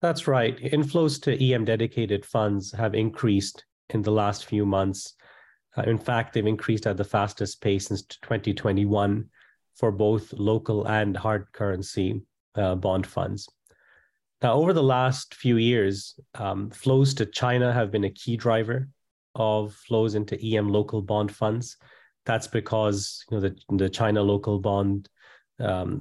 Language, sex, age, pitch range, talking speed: English, male, 30-49, 100-120 Hz, 150 wpm